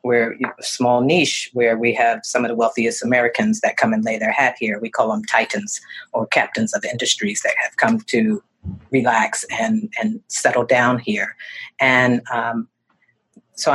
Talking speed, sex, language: 190 wpm, female, English